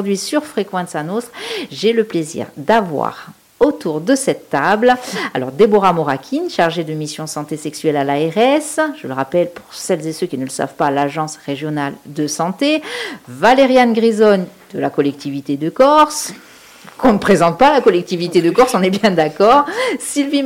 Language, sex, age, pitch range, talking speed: French, female, 50-69, 170-240 Hz, 165 wpm